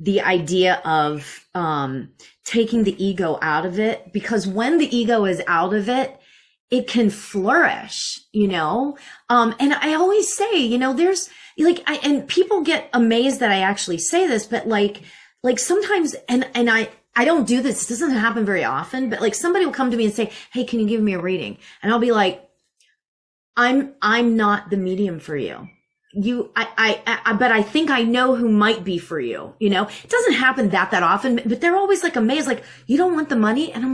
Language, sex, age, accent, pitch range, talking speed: English, female, 30-49, American, 195-270 Hz, 210 wpm